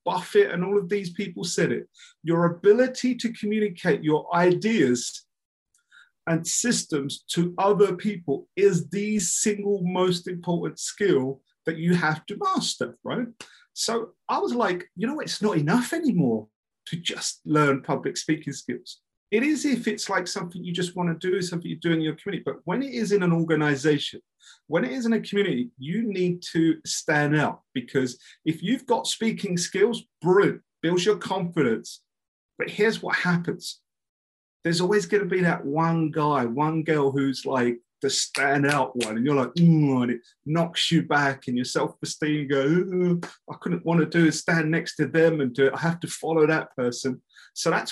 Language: English